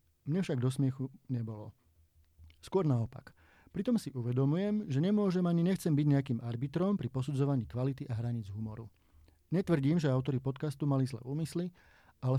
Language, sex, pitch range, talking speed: Slovak, male, 125-150 Hz, 150 wpm